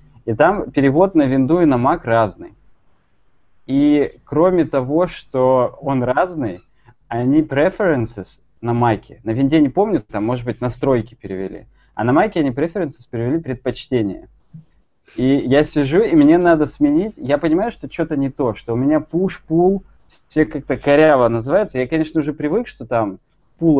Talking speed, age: 160 wpm, 20-39